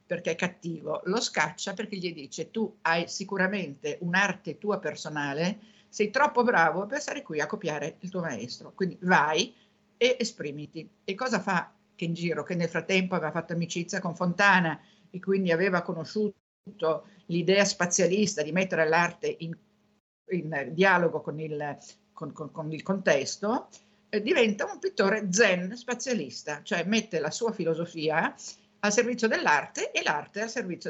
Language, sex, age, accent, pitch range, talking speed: Italian, female, 50-69, native, 165-210 Hz, 150 wpm